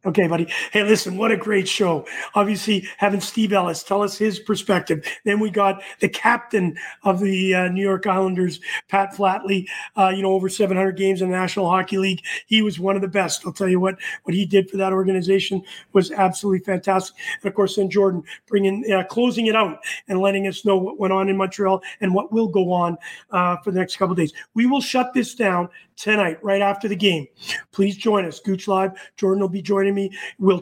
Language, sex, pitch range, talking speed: English, male, 190-215 Hz, 220 wpm